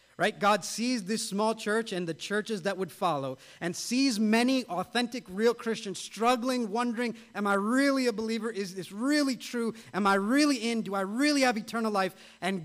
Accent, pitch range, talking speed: American, 175-235 Hz, 190 wpm